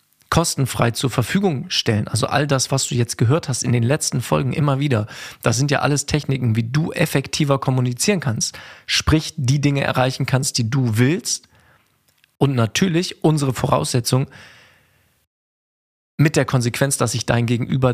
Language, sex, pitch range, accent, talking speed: German, male, 120-145 Hz, German, 155 wpm